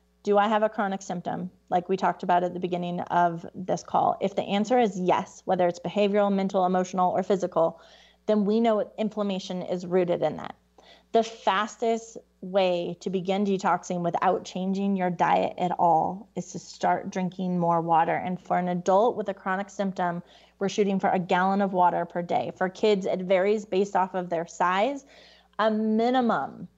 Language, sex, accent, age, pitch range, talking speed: English, female, American, 30-49, 180-210 Hz, 185 wpm